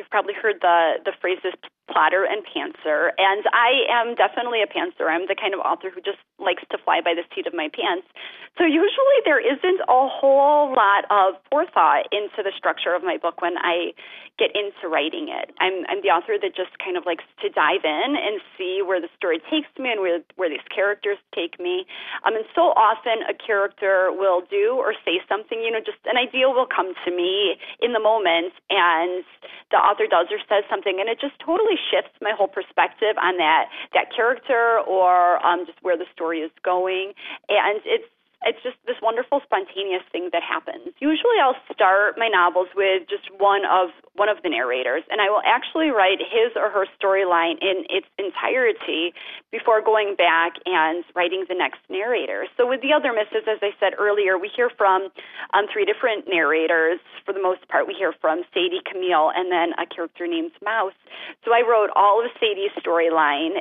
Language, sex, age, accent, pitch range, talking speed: English, female, 30-49, American, 185-290 Hz, 195 wpm